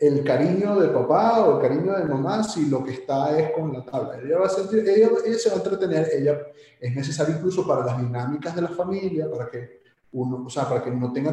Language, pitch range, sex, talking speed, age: Spanish, 135-165 Hz, male, 230 wpm, 30-49